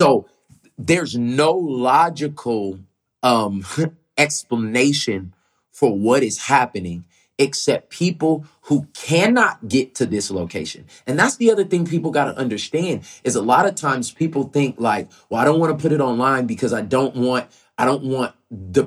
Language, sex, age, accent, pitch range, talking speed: English, male, 30-49, American, 115-155 Hz, 160 wpm